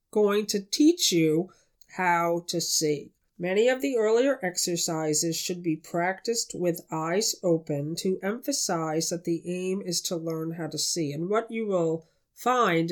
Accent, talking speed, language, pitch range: American, 160 wpm, English, 160-210 Hz